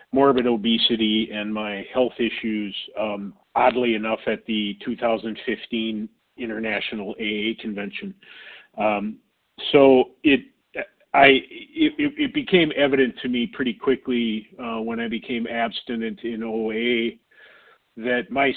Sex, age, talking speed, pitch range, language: male, 40-59, 115 wpm, 110-130 Hz, English